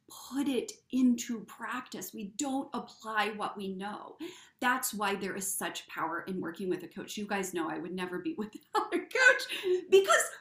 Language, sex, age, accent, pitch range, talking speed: English, female, 40-59, American, 210-305 Hz, 185 wpm